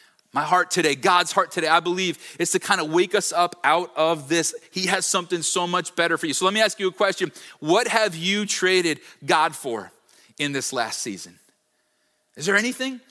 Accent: American